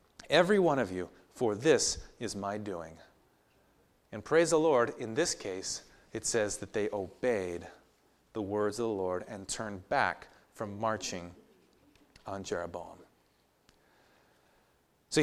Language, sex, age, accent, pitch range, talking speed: English, male, 30-49, American, 110-160 Hz, 135 wpm